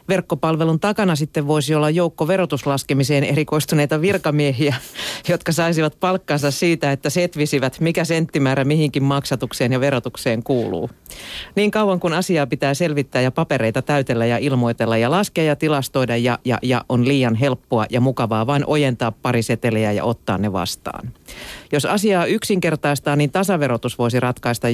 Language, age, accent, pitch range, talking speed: Finnish, 40-59, native, 125-155 Hz, 145 wpm